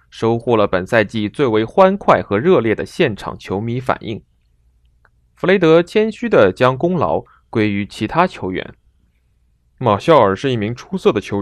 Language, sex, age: Chinese, male, 20-39